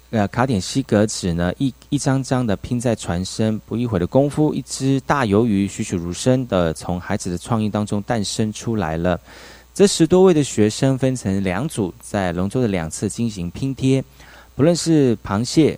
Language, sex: Chinese, male